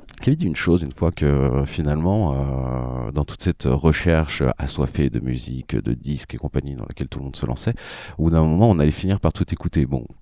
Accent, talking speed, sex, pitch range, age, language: French, 210 wpm, male, 70-95 Hz, 30-49, French